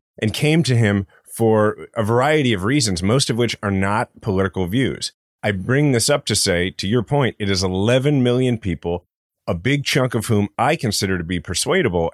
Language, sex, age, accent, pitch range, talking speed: English, male, 30-49, American, 95-125 Hz, 200 wpm